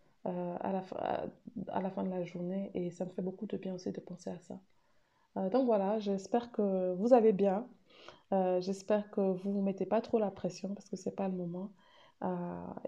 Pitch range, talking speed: 185-205 Hz, 235 wpm